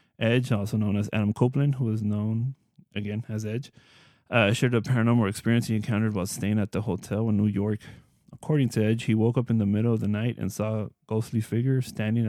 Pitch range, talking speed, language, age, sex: 105-115 Hz, 220 wpm, English, 20-39, male